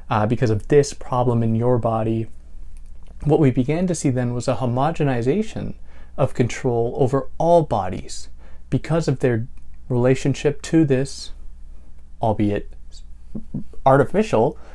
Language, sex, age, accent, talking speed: English, male, 30-49, American, 120 wpm